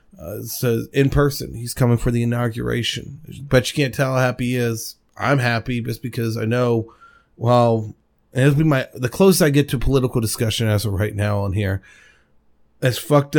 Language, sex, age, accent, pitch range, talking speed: English, male, 30-49, American, 115-135 Hz, 195 wpm